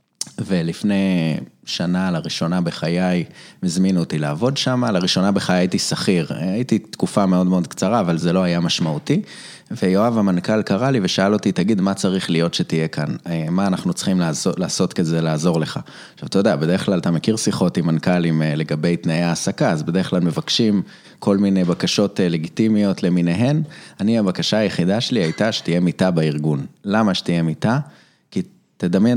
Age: 20-39